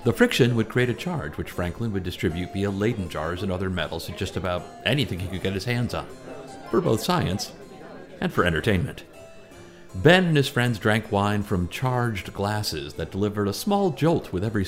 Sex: male